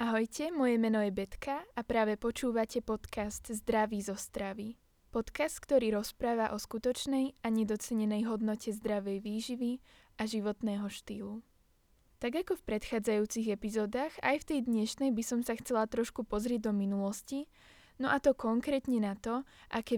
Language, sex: Slovak, female